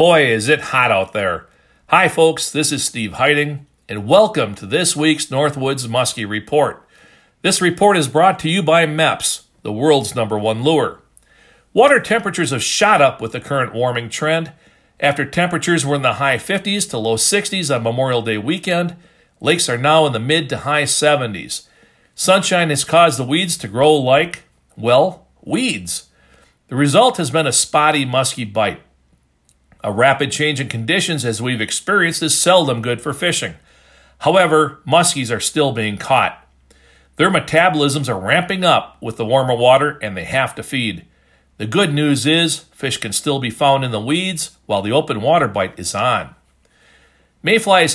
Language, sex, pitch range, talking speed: English, male, 120-160 Hz, 170 wpm